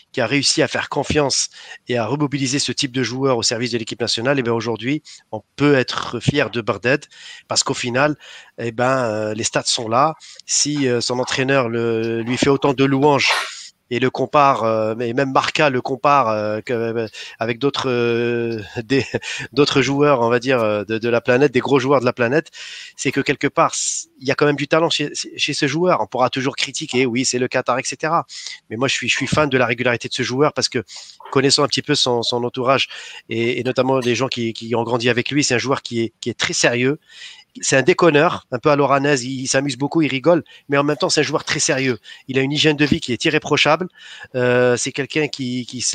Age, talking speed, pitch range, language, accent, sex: 30-49, 230 wpm, 125-150 Hz, French, French, male